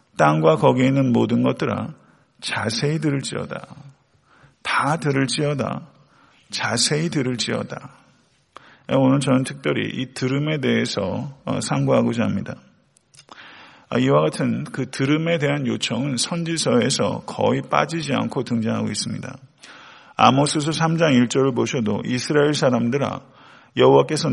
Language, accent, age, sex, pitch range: Korean, native, 40-59, male, 120-140 Hz